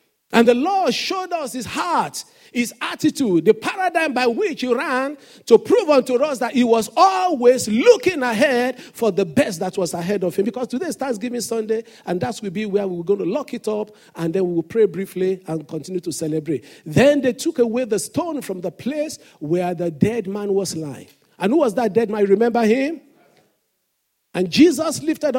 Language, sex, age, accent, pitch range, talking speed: English, male, 50-69, Nigerian, 185-245 Hz, 200 wpm